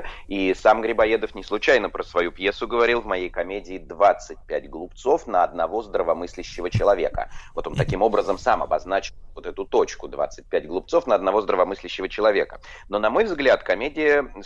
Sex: male